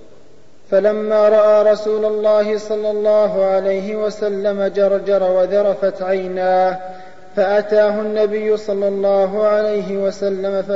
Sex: male